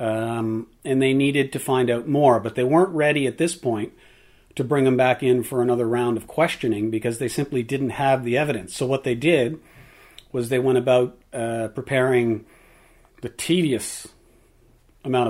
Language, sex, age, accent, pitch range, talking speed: English, male, 40-59, American, 115-135 Hz, 175 wpm